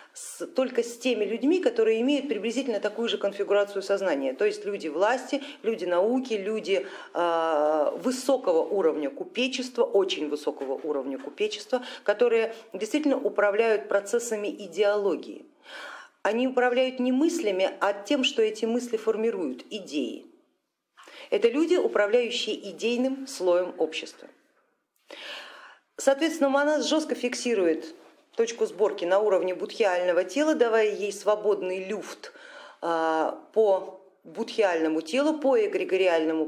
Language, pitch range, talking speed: Russian, 200-280 Hz, 115 wpm